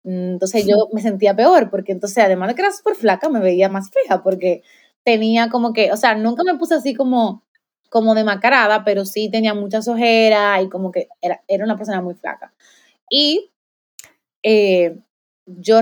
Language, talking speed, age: Spanish, 180 wpm, 20-39